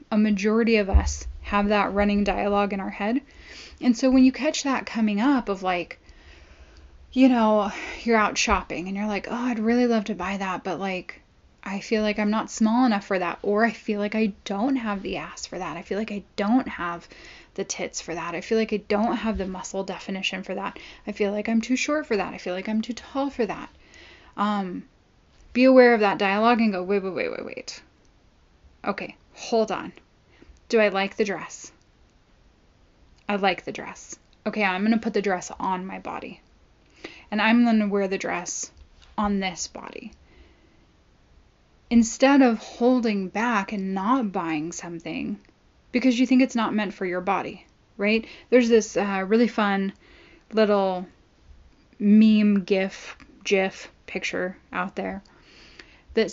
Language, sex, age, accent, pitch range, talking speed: English, female, 10-29, American, 190-230 Hz, 180 wpm